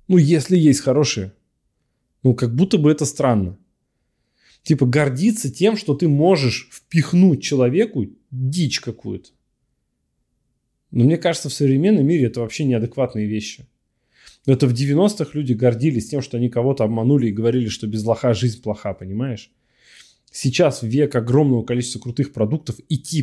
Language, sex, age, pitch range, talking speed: Russian, male, 20-39, 120-150 Hz, 145 wpm